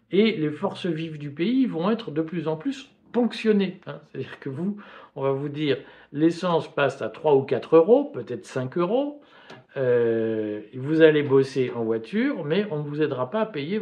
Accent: French